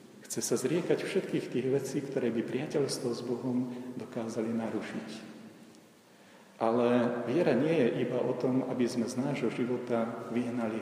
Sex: male